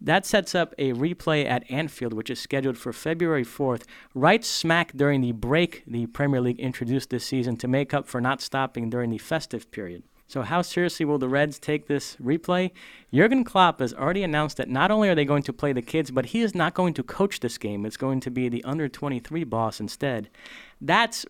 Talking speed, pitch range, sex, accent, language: 215 wpm, 125-160 Hz, male, American, English